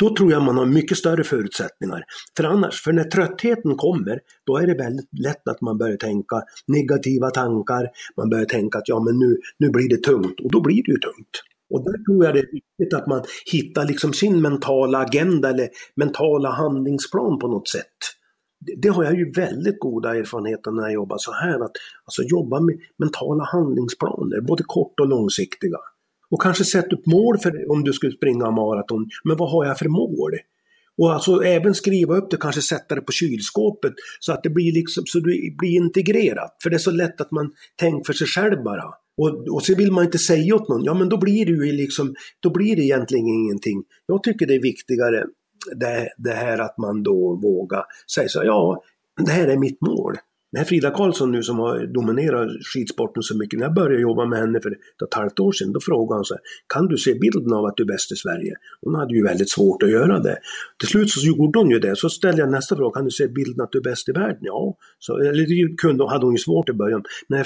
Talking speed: 220 wpm